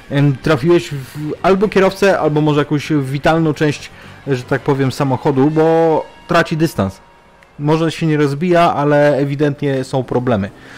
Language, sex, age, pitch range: Polish, male, 30-49, 95-155 Hz